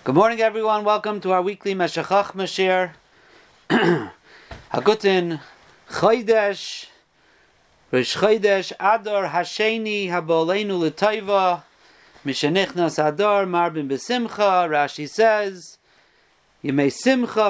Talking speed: 90 wpm